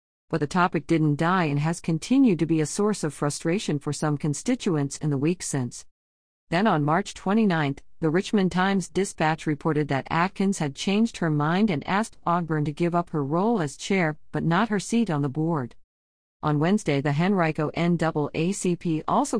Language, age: English, 50-69